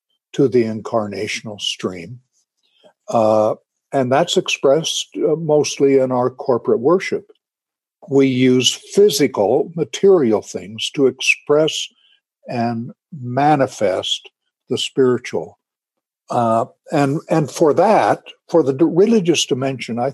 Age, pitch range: 60-79, 120-185 Hz